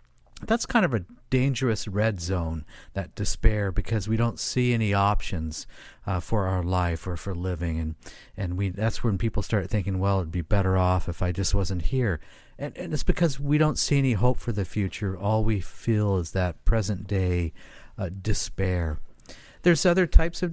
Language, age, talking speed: English, 50-69, 190 wpm